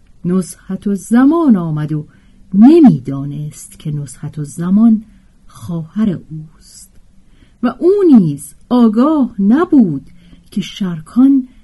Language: Persian